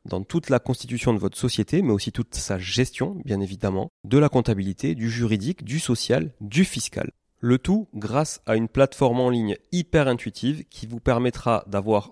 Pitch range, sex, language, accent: 110-135 Hz, male, French, French